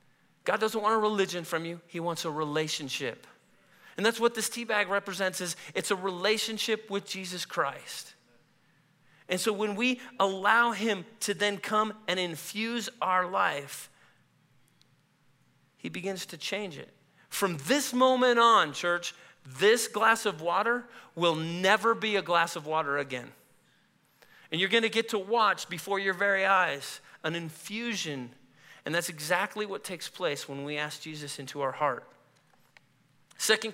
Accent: American